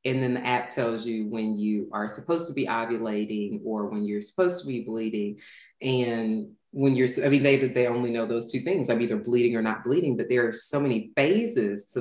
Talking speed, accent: 225 wpm, American